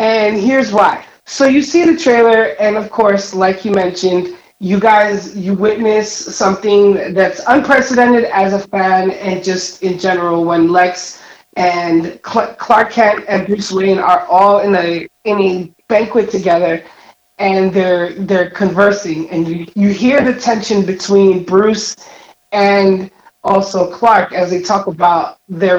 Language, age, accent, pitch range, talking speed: English, 30-49, American, 180-220 Hz, 150 wpm